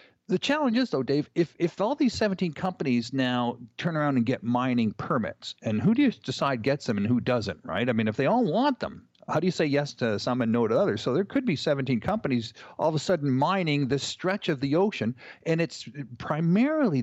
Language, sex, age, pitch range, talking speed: English, male, 50-69, 120-175 Hz, 235 wpm